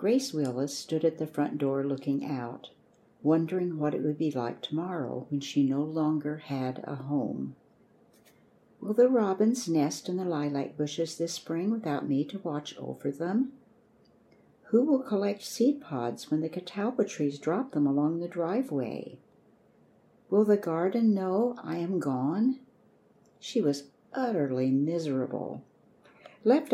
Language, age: English, 60-79